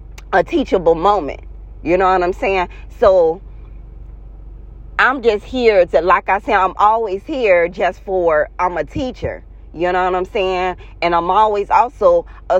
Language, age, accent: English, 30-49, American